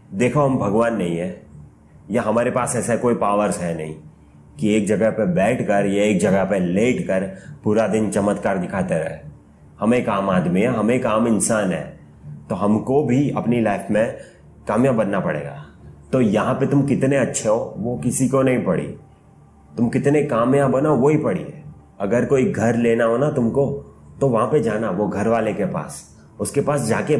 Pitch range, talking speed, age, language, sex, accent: 105-140 Hz, 195 wpm, 30-49, Hindi, male, native